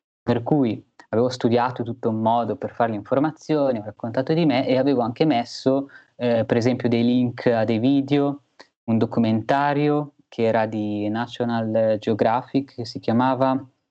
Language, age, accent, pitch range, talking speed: Italian, 20-39, native, 105-125 Hz, 160 wpm